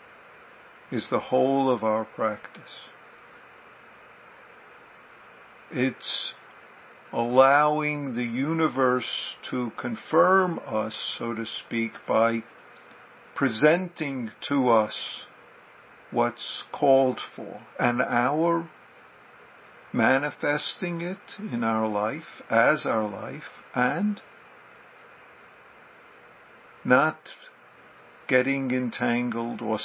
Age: 60-79